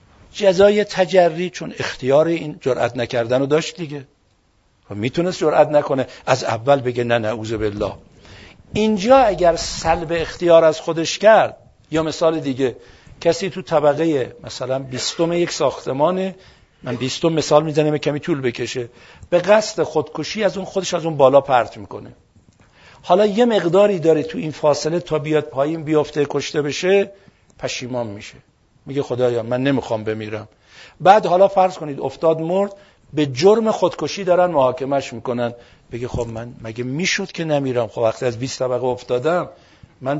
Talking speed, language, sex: 150 wpm, Persian, male